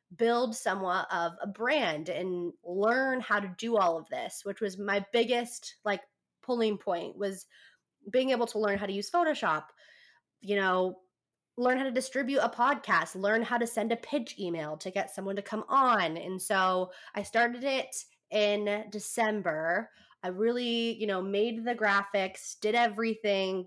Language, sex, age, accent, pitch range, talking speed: English, female, 20-39, American, 195-230 Hz, 165 wpm